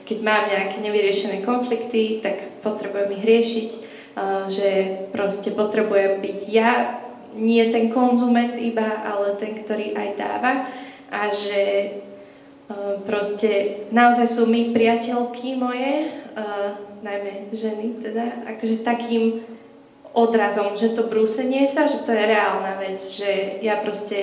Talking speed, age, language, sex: 120 wpm, 20-39, Slovak, female